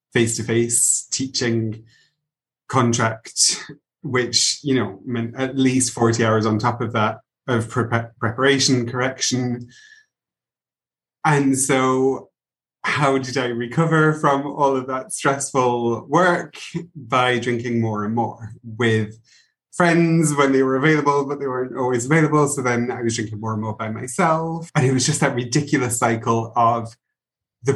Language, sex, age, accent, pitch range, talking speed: English, male, 30-49, British, 115-140 Hz, 145 wpm